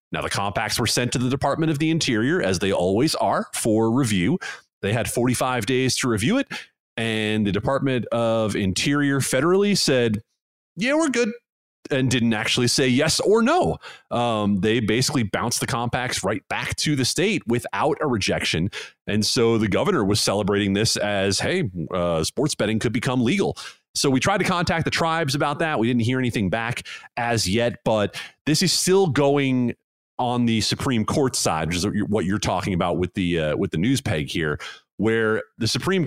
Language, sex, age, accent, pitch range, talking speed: English, male, 30-49, American, 100-135 Hz, 190 wpm